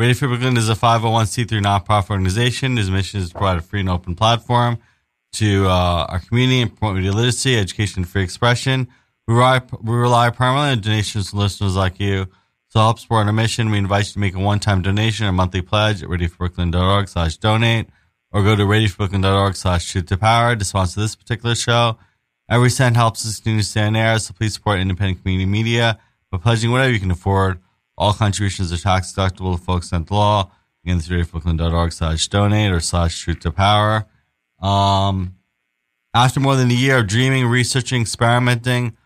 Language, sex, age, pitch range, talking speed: English, male, 20-39, 95-115 Hz, 190 wpm